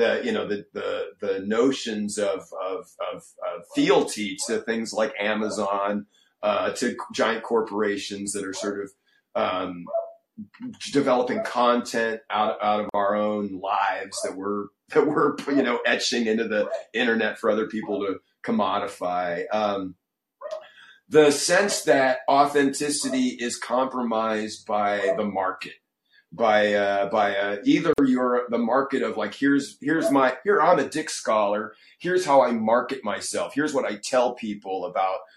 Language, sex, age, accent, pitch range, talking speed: English, male, 40-59, American, 105-150 Hz, 150 wpm